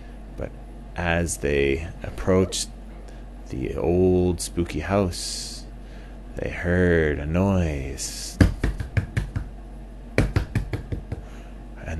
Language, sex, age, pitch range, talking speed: English, male, 30-49, 80-120 Hz, 60 wpm